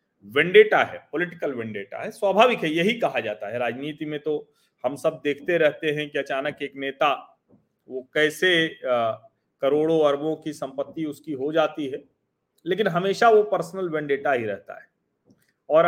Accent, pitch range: native, 125-175 Hz